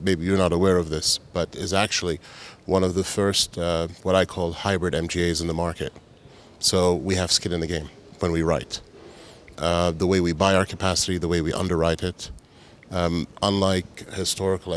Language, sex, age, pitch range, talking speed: English, male, 30-49, 85-95 Hz, 190 wpm